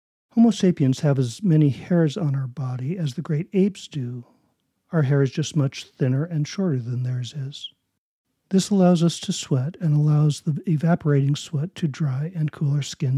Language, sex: English, male